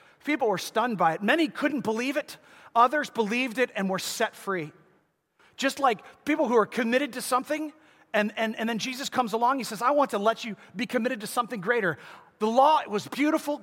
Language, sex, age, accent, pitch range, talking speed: English, male, 30-49, American, 185-245 Hz, 210 wpm